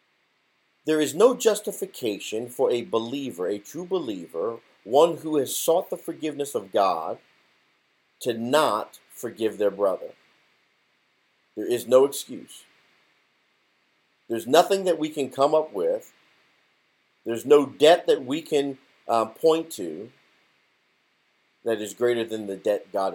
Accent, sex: American, male